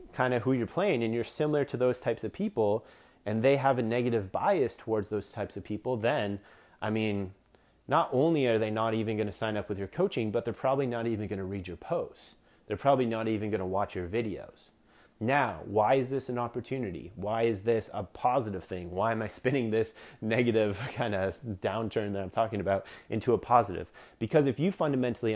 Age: 30-49